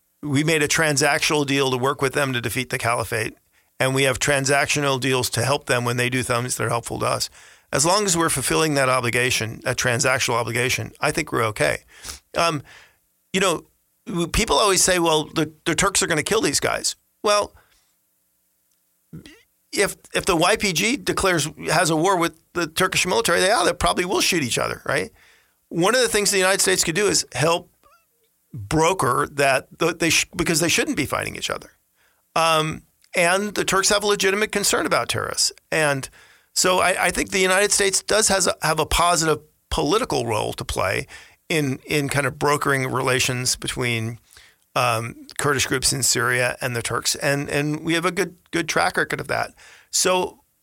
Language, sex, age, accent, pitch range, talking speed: English, male, 40-59, American, 125-180 Hz, 190 wpm